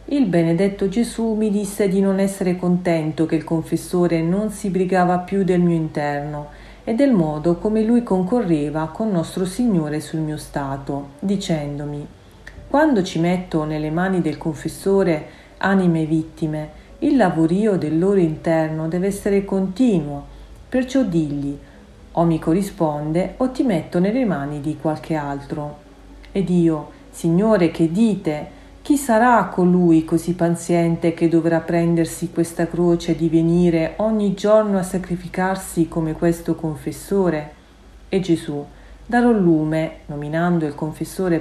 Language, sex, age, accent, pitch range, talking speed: Italian, female, 40-59, native, 160-195 Hz, 135 wpm